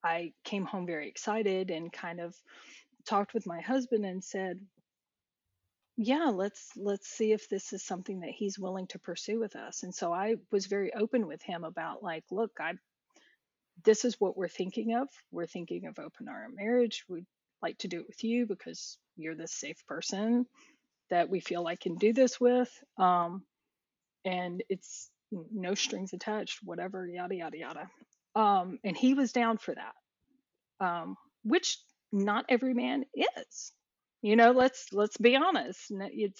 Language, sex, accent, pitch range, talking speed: English, female, American, 185-245 Hz, 170 wpm